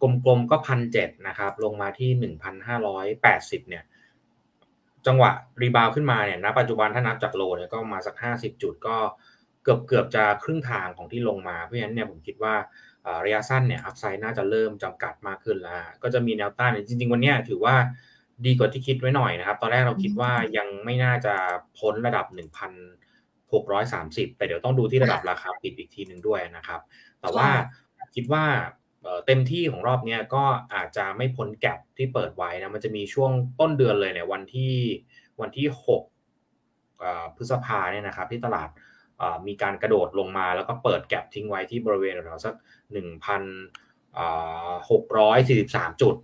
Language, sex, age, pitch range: Thai, male, 20-39, 105-130 Hz